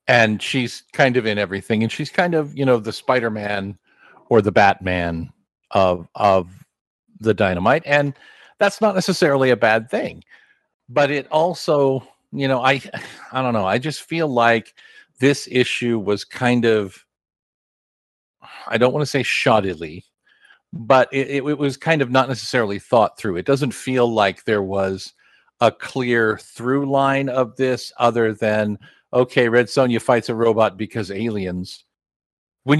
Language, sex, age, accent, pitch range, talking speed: English, male, 50-69, American, 110-140 Hz, 155 wpm